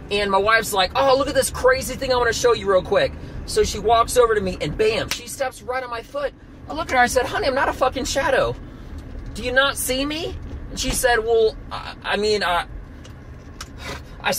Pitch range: 195-290 Hz